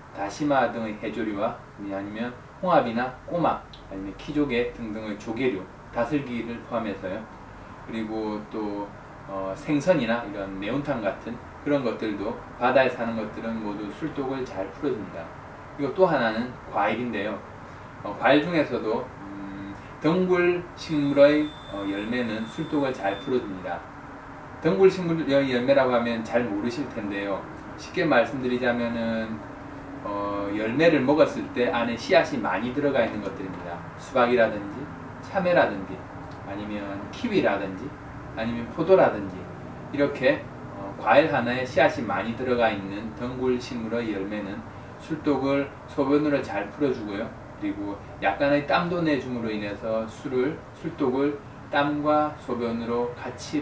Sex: male